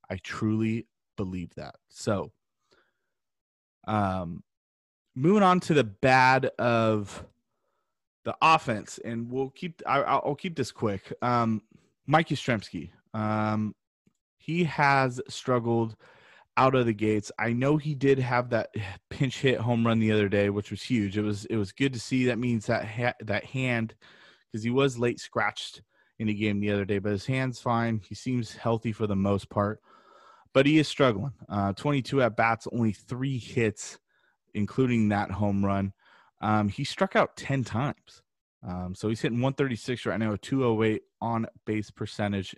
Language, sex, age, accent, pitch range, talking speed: English, male, 30-49, American, 105-125 Hz, 165 wpm